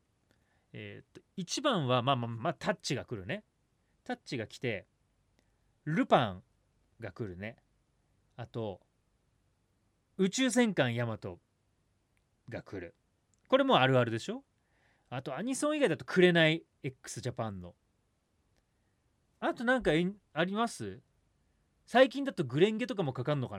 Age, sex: 30-49, male